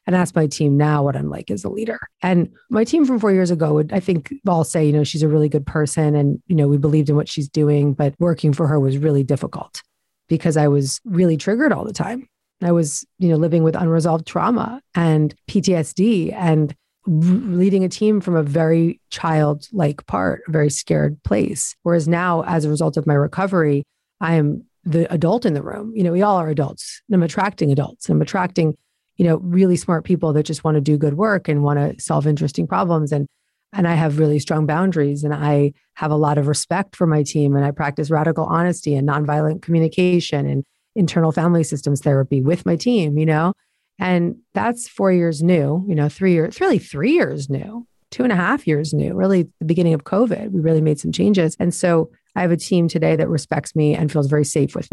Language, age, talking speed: English, 40-59, 220 wpm